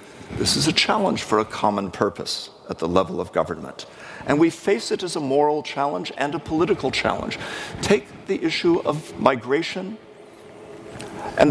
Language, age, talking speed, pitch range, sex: English, 50-69, 160 wpm, 115-165 Hz, male